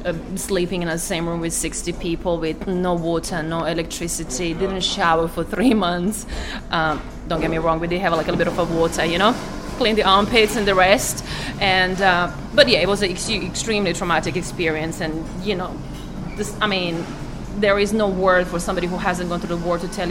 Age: 20-39